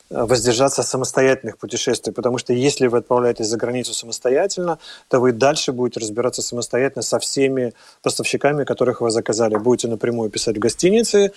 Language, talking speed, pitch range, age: Russian, 160 wpm, 115-130 Hz, 30-49